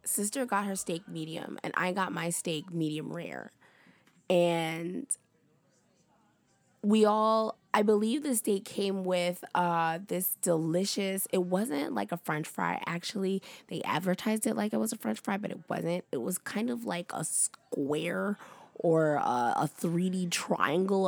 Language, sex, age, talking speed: English, female, 20-39, 155 wpm